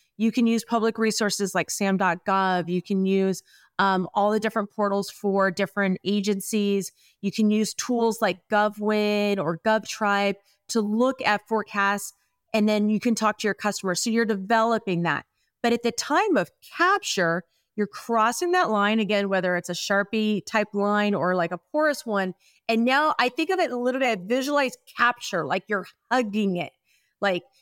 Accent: American